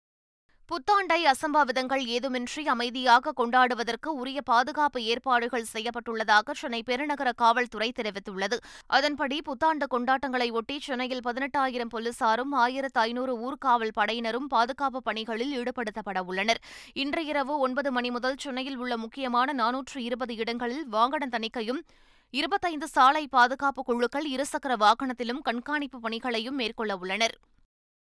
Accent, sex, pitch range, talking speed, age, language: native, female, 230-275 Hz, 100 wpm, 20-39, Tamil